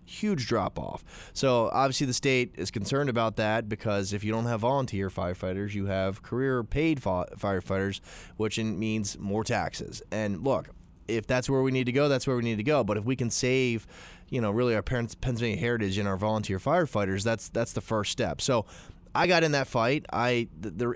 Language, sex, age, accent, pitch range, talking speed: English, male, 20-39, American, 100-125 Hz, 205 wpm